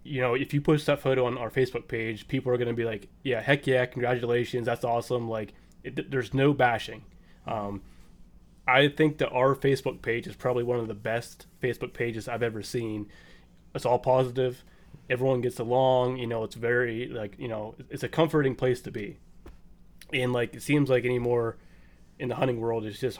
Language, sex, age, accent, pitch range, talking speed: English, male, 20-39, American, 115-130 Hz, 195 wpm